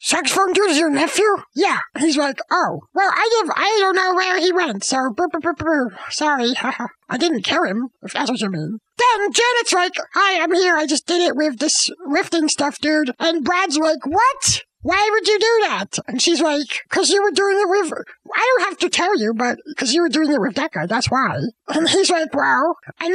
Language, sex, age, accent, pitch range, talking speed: English, male, 40-59, American, 280-380 Hz, 230 wpm